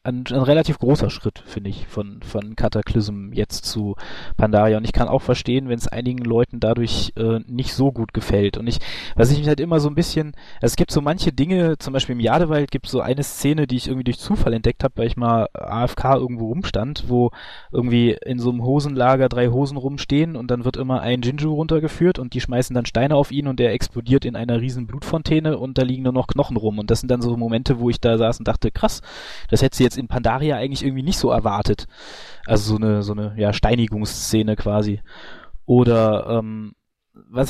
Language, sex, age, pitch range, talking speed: German, male, 20-39, 110-135 Hz, 220 wpm